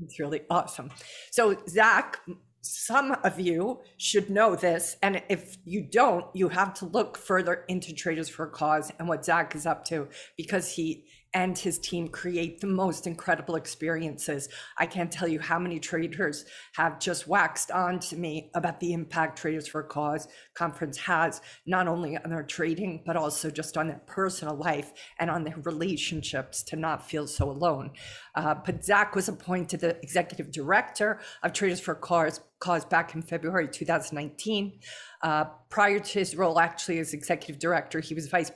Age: 50-69